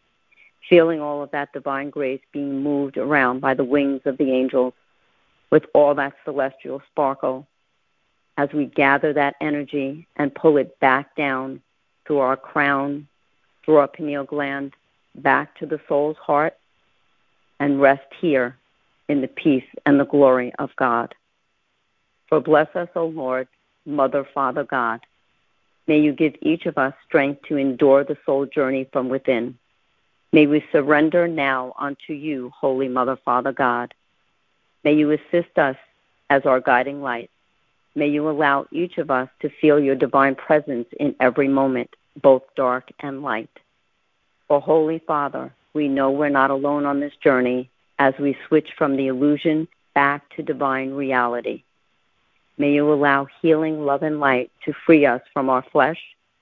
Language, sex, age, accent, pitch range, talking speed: English, female, 50-69, American, 135-150 Hz, 155 wpm